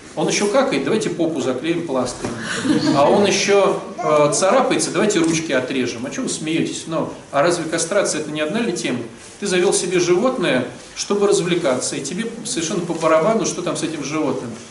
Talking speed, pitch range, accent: 180 wpm, 170-210 Hz, native